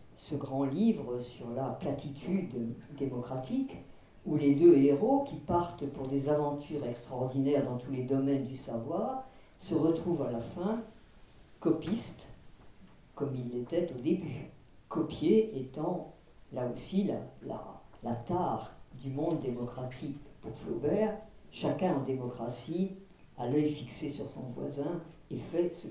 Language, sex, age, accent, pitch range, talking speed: French, female, 50-69, French, 130-170 Hz, 135 wpm